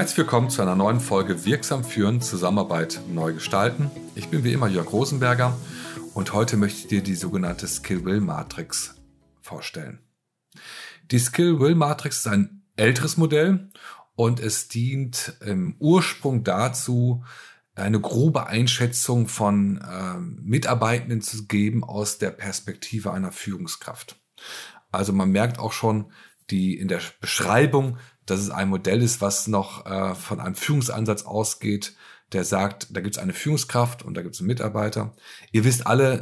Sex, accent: male, German